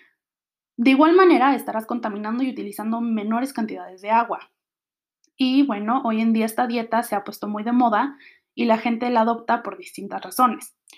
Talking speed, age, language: 175 wpm, 20-39, Spanish